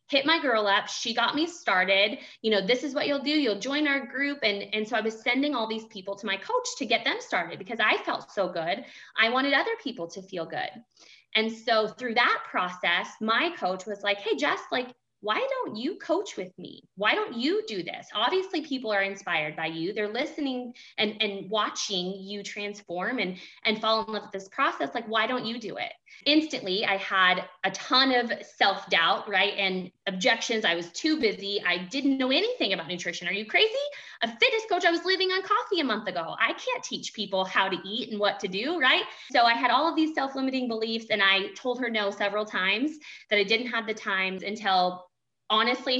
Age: 20-39